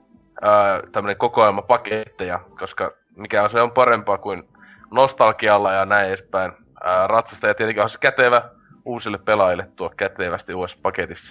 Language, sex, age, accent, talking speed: Finnish, male, 20-39, native, 135 wpm